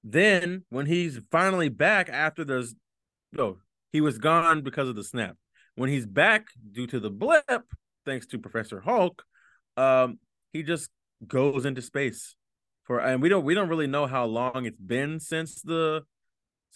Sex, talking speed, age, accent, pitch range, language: male, 170 wpm, 20-39, American, 115-160 Hz, English